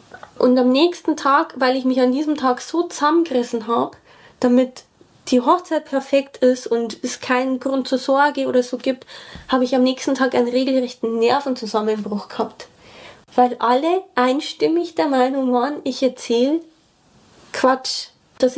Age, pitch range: 20-39, 230-270 Hz